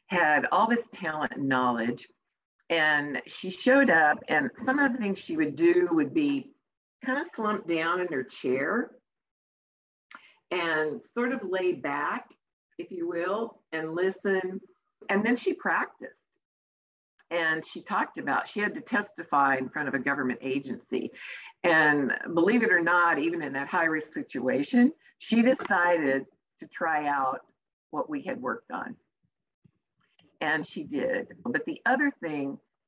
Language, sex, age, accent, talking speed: English, female, 50-69, American, 150 wpm